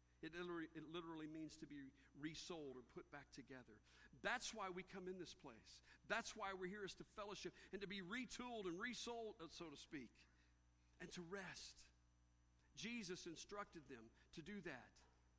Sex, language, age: male, English, 50-69